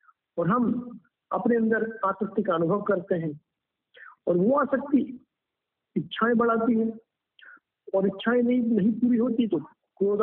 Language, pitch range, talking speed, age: Hindi, 185-230 Hz, 135 wpm, 50-69